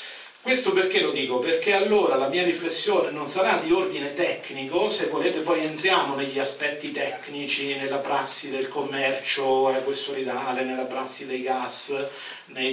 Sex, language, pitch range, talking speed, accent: male, Italian, 130-175 Hz, 150 wpm, native